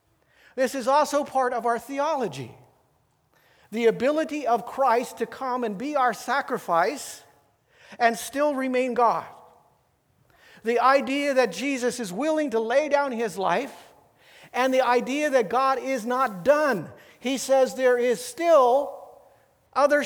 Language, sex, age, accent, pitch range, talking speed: English, male, 50-69, American, 235-280 Hz, 140 wpm